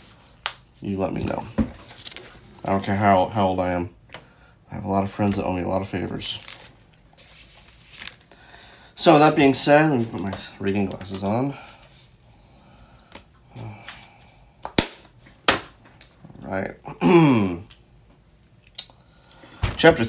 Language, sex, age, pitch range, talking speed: English, male, 30-49, 105-130 Hz, 115 wpm